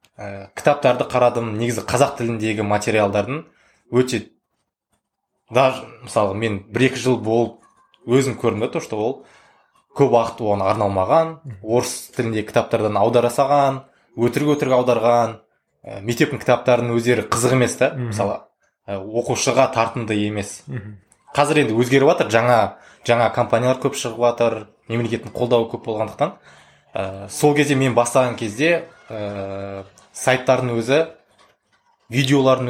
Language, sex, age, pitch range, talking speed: Russian, male, 20-39, 105-125 Hz, 80 wpm